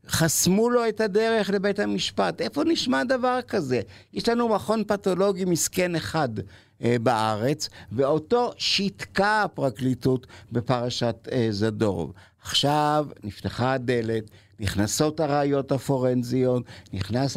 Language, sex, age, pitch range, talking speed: Hebrew, male, 60-79, 120-180 Hz, 105 wpm